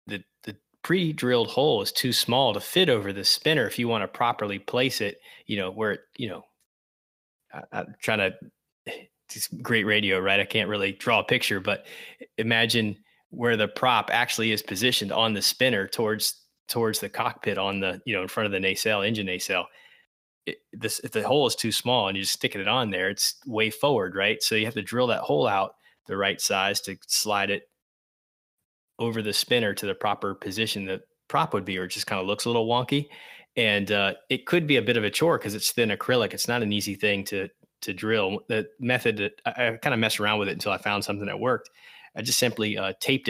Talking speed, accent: 225 wpm, American